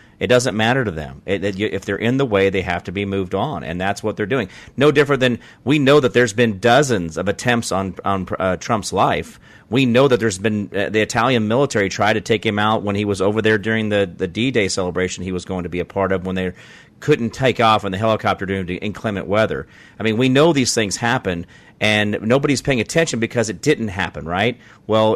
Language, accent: English, American